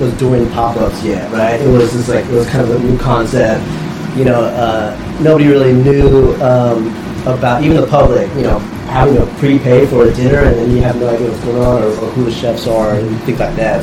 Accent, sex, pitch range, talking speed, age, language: American, male, 115-135 Hz, 235 wpm, 30-49, English